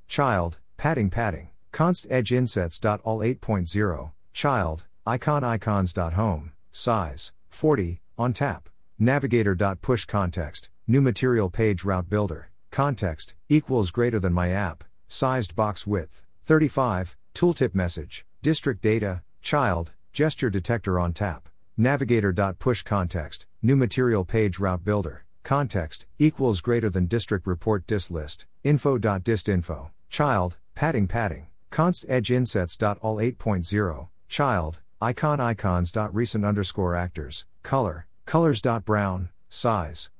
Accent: American